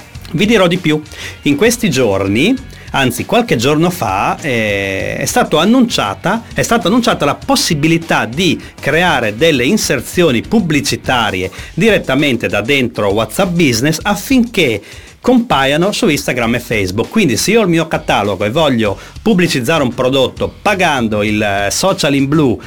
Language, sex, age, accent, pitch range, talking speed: Italian, male, 40-59, native, 115-185 Hz, 140 wpm